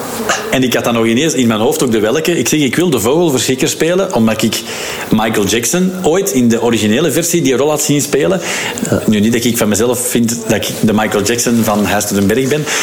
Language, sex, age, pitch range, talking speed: Dutch, male, 50-69, 105-145 Hz, 225 wpm